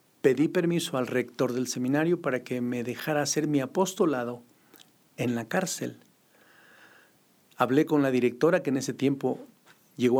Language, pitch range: Spanish, 125-155 Hz